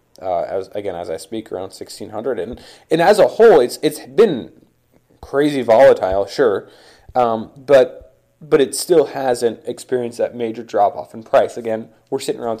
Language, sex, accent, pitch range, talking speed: English, male, American, 120-200 Hz, 170 wpm